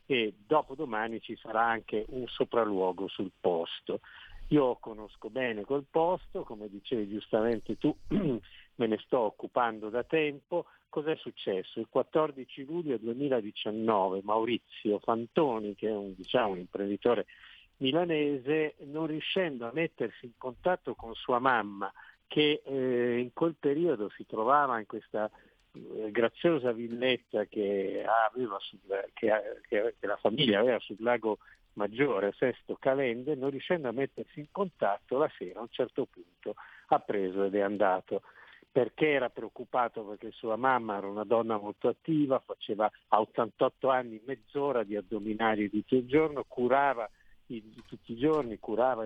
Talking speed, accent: 145 wpm, native